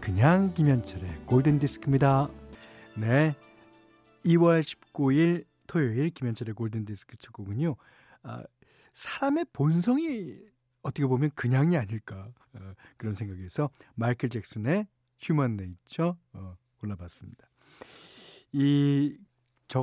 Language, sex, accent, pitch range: Korean, male, native, 120-180 Hz